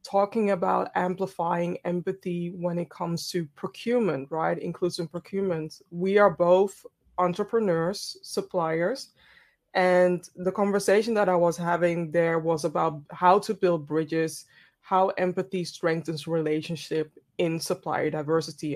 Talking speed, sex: 120 wpm, female